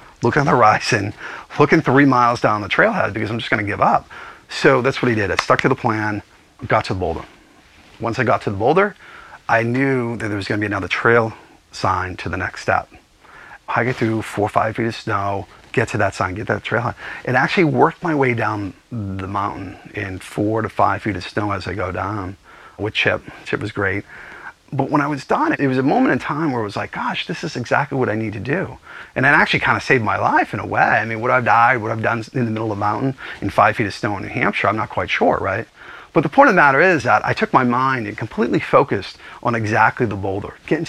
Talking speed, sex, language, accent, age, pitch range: 255 wpm, male, English, American, 30-49, 105-125 Hz